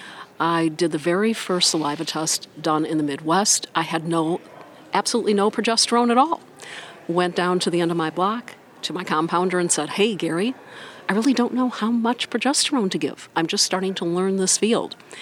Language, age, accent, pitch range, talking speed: English, 50-69, American, 150-180 Hz, 195 wpm